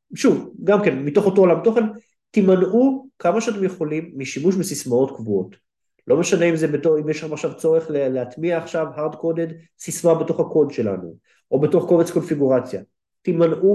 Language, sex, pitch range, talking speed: Hebrew, male, 135-180 Hz, 160 wpm